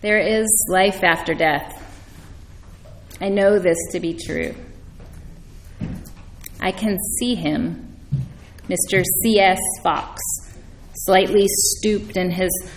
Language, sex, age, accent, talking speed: English, female, 30-49, American, 105 wpm